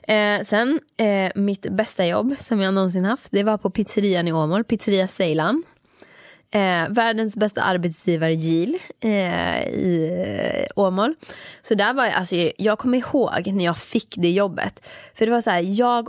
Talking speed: 170 wpm